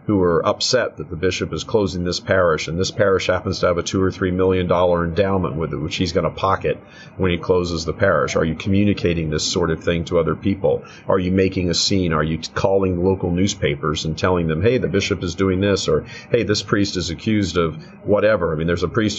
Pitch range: 85-110 Hz